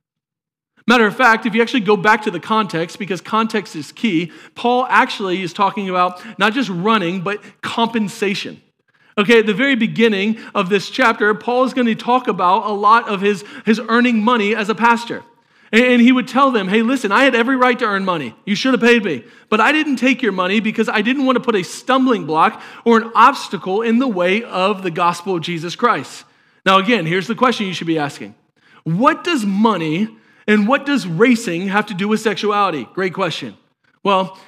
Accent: American